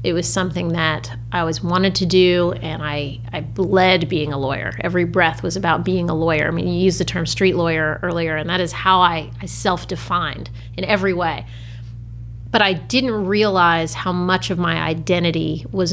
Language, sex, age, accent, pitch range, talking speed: English, female, 30-49, American, 120-190 Hz, 195 wpm